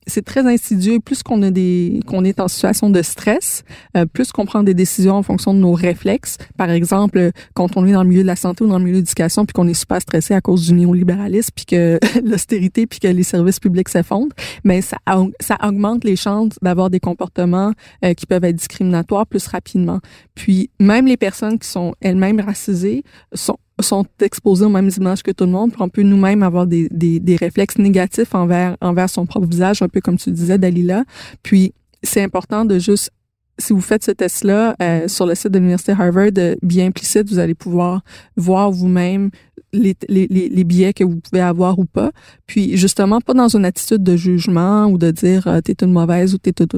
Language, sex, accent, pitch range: French, female, Canadian, 180-205 Hz